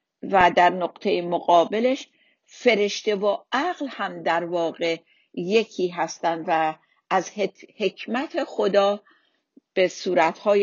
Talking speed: 100 wpm